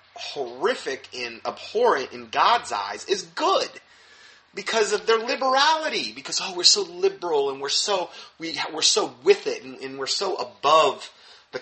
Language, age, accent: English, 30-49, American